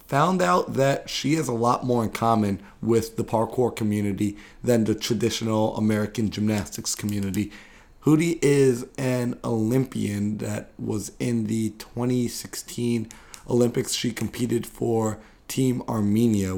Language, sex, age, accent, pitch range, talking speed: English, male, 30-49, American, 105-125 Hz, 125 wpm